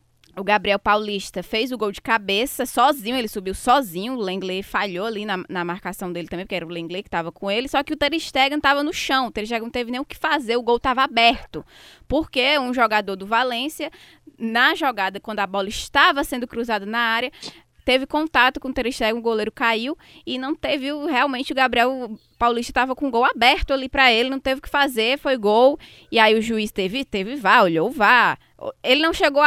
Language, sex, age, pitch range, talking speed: Portuguese, female, 10-29, 200-270 Hz, 220 wpm